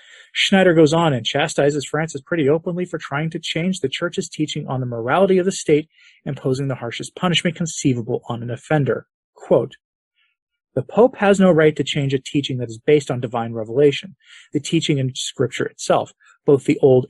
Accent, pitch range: American, 130-175 Hz